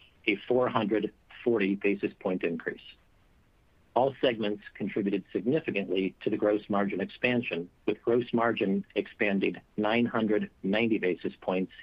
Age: 50-69